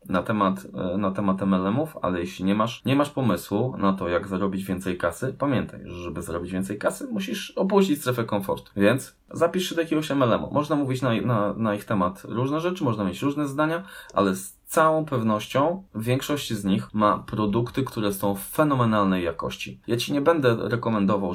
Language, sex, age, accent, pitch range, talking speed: Polish, male, 20-39, native, 100-140 Hz, 185 wpm